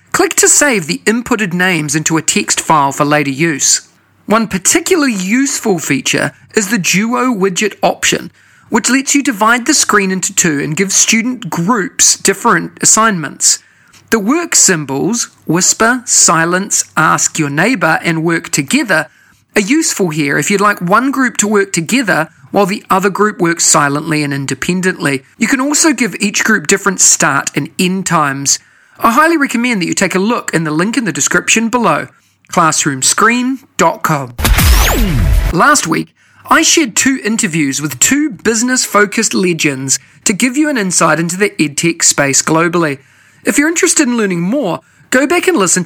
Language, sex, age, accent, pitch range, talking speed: English, male, 40-59, Australian, 170-250 Hz, 160 wpm